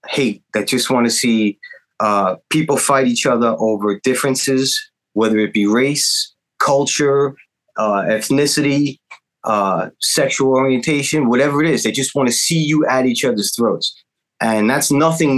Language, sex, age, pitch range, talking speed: English, male, 30-49, 115-145 Hz, 150 wpm